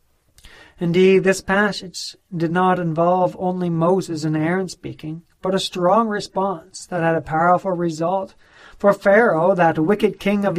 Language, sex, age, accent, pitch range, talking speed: English, male, 40-59, American, 160-195 Hz, 145 wpm